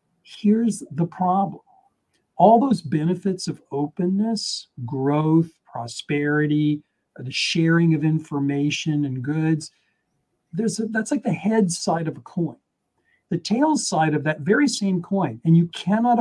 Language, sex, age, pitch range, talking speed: English, male, 50-69, 150-195 Hz, 135 wpm